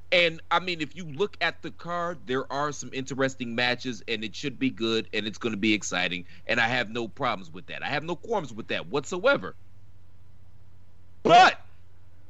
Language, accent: English, American